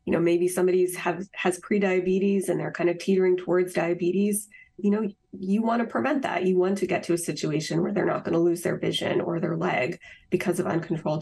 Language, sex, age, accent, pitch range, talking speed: English, female, 20-39, American, 175-190 Hz, 220 wpm